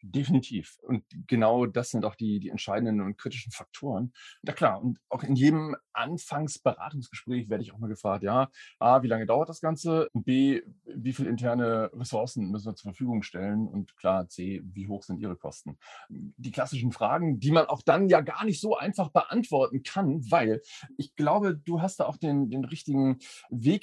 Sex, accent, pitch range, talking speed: male, German, 110-145 Hz, 185 wpm